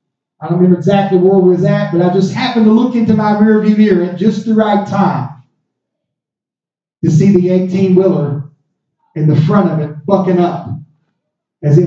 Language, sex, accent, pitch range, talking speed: English, male, American, 155-215 Hz, 185 wpm